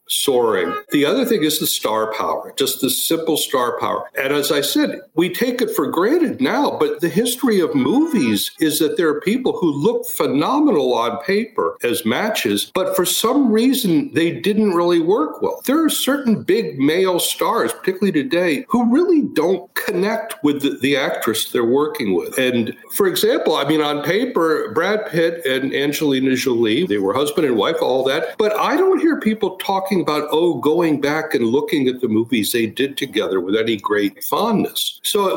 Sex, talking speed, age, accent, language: male, 190 wpm, 60-79, American, English